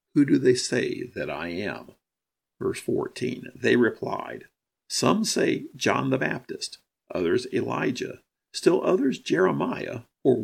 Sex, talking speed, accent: male, 125 wpm, American